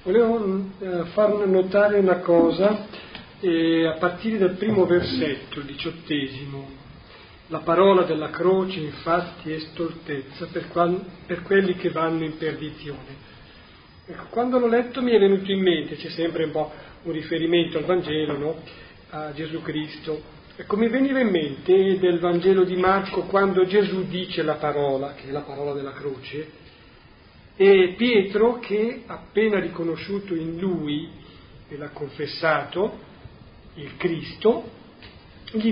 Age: 40-59